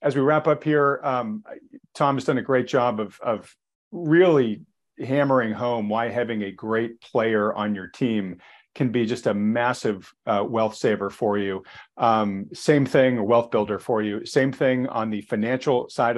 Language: English